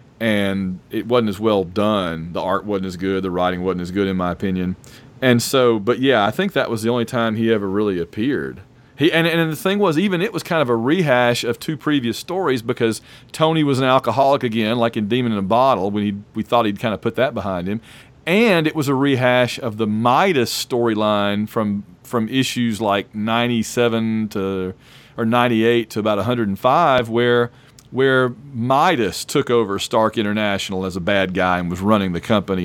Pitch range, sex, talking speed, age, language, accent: 105-130 Hz, male, 200 wpm, 40-59, English, American